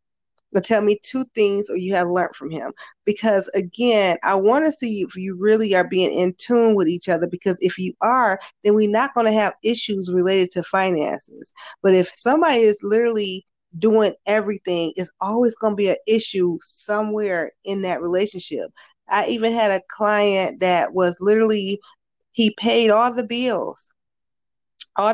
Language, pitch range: English, 190-235 Hz